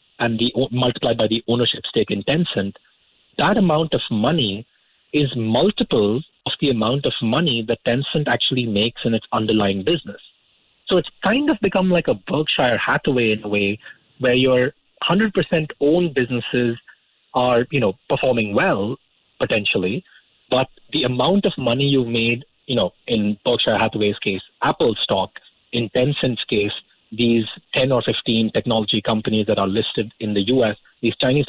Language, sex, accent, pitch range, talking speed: English, male, Indian, 115-155 Hz, 160 wpm